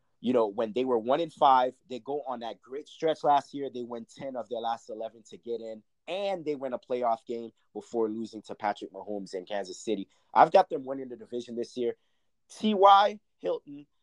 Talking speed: 205 wpm